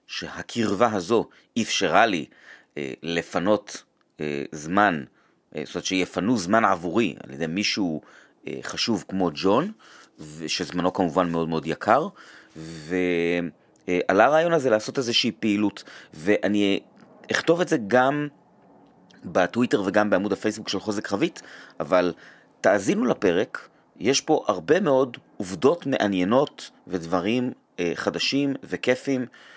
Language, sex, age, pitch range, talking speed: Hebrew, male, 30-49, 85-125 Hz, 120 wpm